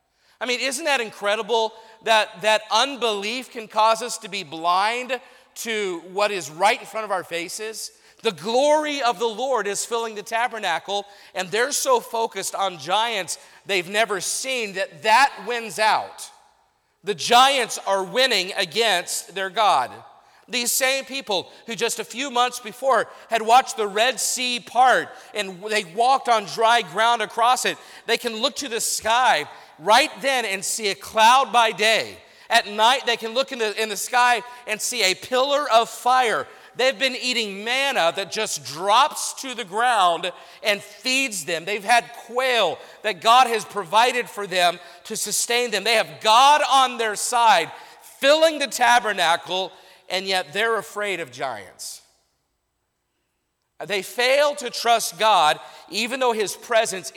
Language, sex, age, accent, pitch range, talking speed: English, male, 40-59, American, 200-245 Hz, 160 wpm